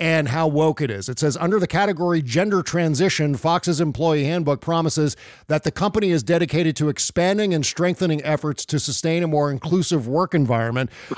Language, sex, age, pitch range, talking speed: English, male, 50-69, 150-175 Hz, 175 wpm